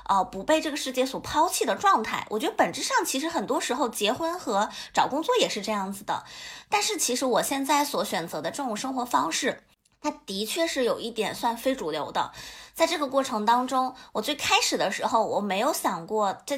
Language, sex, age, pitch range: Chinese, female, 20-39, 220-300 Hz